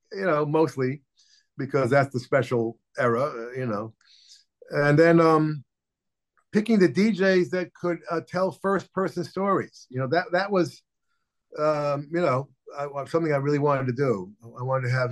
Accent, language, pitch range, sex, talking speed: American, English, 115-140 Hz, male, 165 wpm